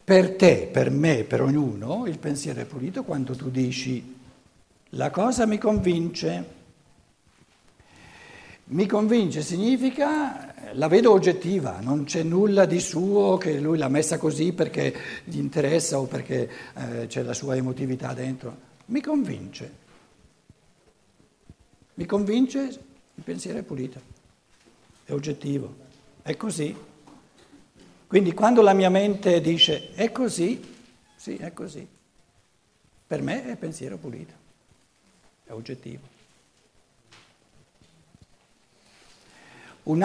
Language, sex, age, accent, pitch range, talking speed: Italian, male, 60-79, native, 125-185 Hz, 110 wpm